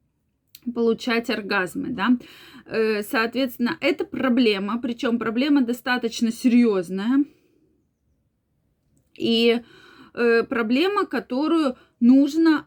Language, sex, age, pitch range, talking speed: Russian, female, 20-39, 225-280 Hz, 65 wpm